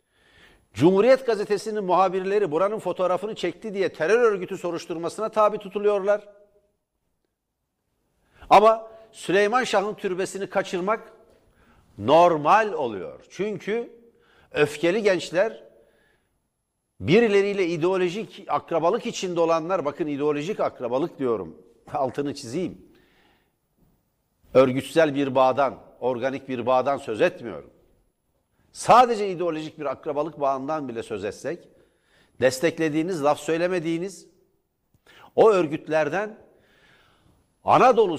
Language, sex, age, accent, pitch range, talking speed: Turkish, male, 60-79, native, 155-210 Hz, 85 wpm